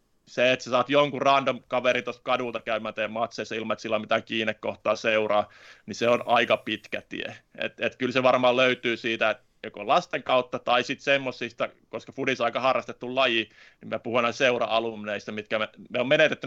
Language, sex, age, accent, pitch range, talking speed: Finnish, male, 30-49, native, 115-130 Hz, 195 wpm